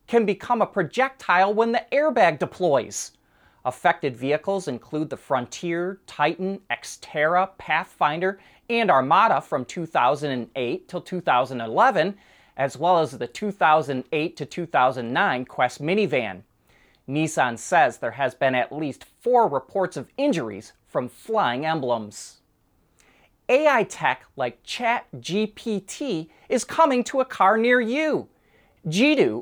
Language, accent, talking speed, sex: English, American, 120 wpm, male